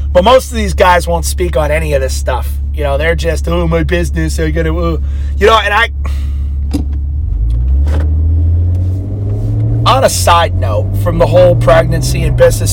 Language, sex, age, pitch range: English, male, 30-49, 75-105 Hz